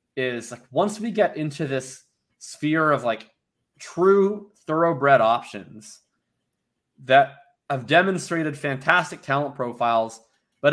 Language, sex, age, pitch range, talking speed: English, male, 20-39, 120-155 Hz, 110 wpm